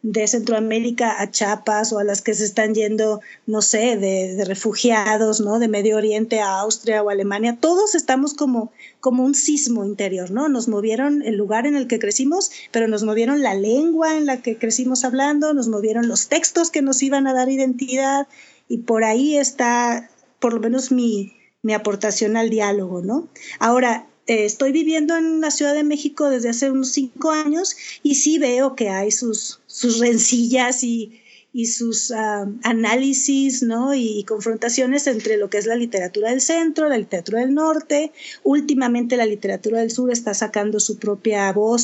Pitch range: 220-280 Hz